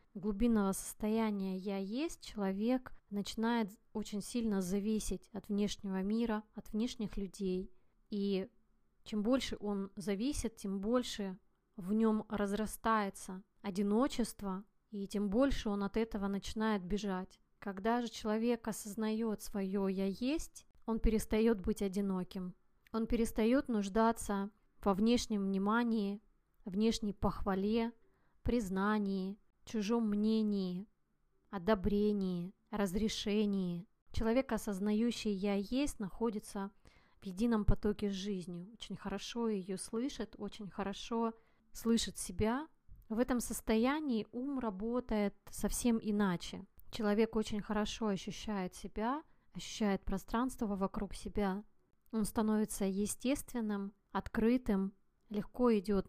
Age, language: 20-39, Russian